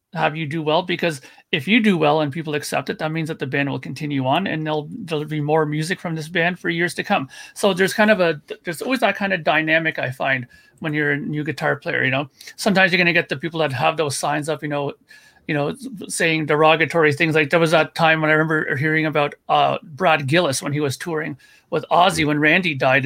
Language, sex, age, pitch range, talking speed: English, male, 40-59, 155-190 Hz, 250 wpm